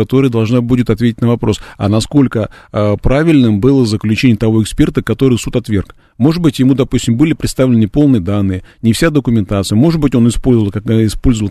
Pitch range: 105-125 Hz